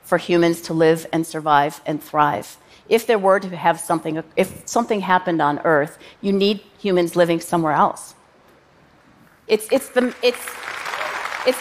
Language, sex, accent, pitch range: Korean, female, American, 165-210 Hz